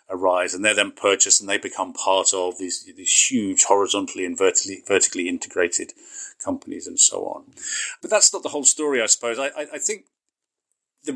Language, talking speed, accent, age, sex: English, 175 wpm, British, 40-59, male